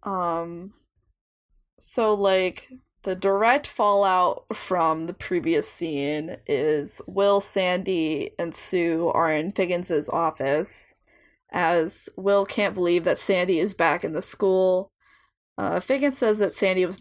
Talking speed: 125 wpm